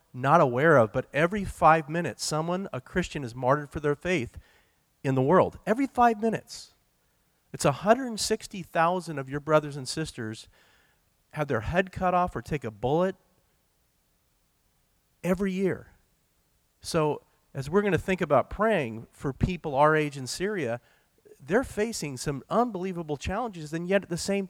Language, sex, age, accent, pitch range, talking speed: English, male, 40-59, American, 130-180 Hz, 155 wpm